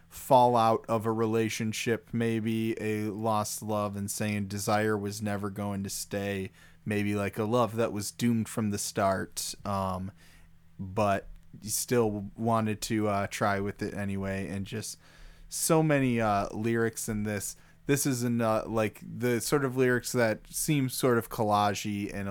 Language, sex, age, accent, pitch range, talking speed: English, male, 20-39, American, 100-120 Hz, 155 wpm